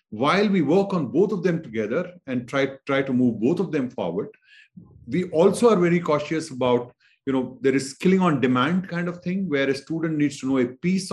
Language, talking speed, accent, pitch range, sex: English, 225 wpm, Indian, 130-180 Hz, male